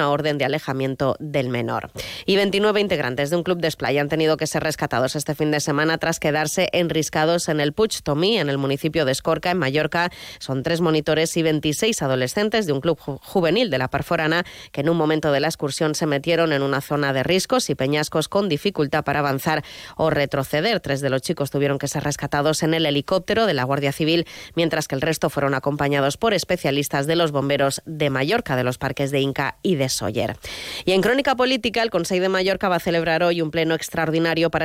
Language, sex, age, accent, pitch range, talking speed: Spanish, female, 20-39, Spanish, 145-175 Hz, 215 wpm